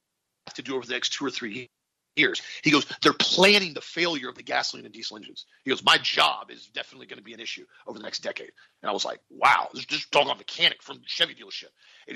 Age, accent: 40-59, American